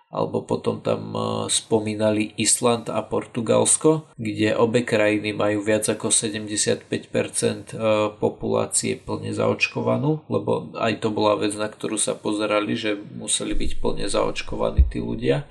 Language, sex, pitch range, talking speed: Slovak, male, 105-125 Hz, 130 wpm